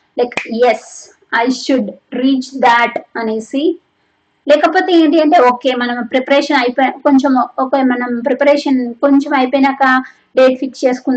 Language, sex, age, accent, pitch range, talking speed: Telugu, female, 20-39, native, 240-280 Hz, 145 wpm